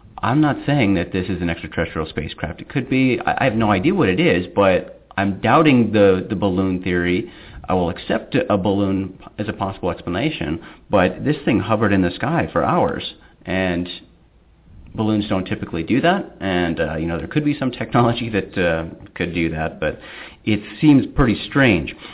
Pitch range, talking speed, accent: 90-125 Hz, 190 wpm, American